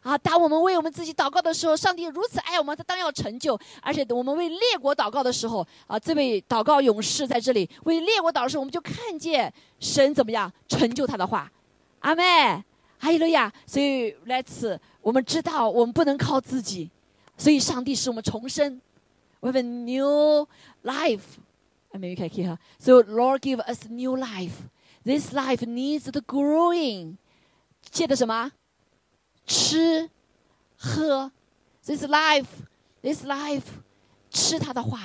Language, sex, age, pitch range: Chinese, female, 20-39, 215-305 Hz